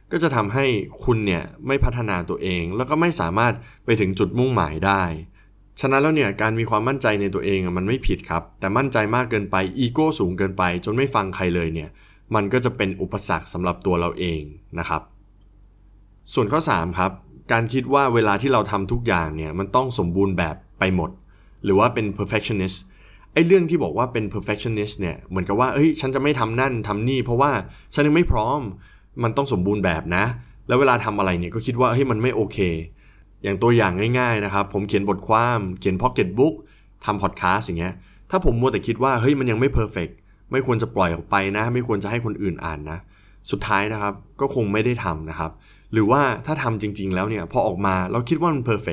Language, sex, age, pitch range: Thai, male, 20-39, 95-125 Hz